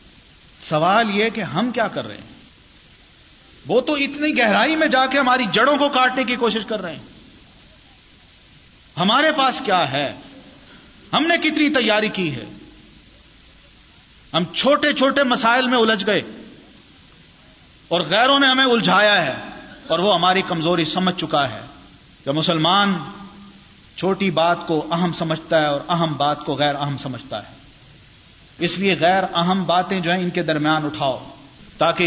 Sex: male